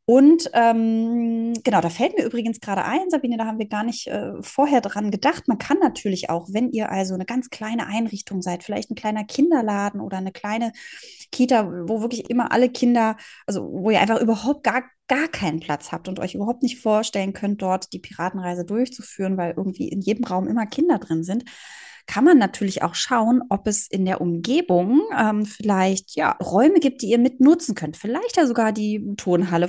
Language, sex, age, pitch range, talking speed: German, female, 20-39, 190-245 Hz, 195 wpm